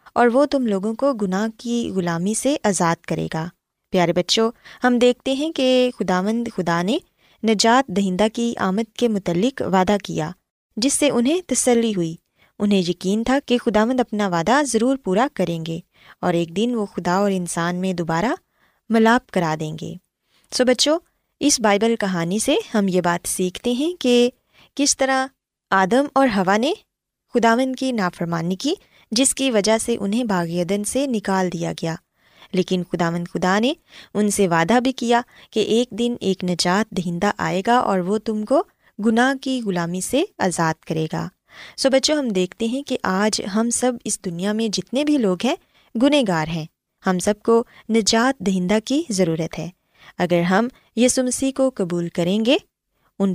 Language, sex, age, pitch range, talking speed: Urdu, female, 20-39, 185-250 Hz, 170 wpm